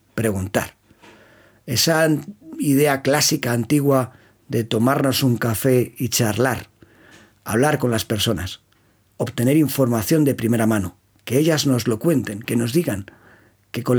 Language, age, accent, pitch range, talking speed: Spanish, 40-59, Spanish, 110-140 Hz, 130 wpm